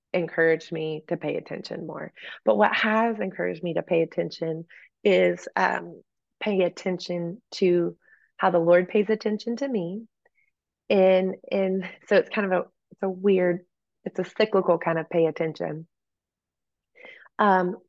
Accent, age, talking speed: American, 20-39, 150 wpm